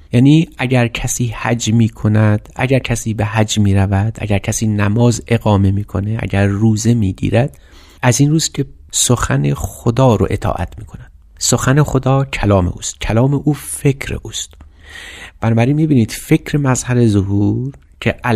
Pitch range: 100-125 Hz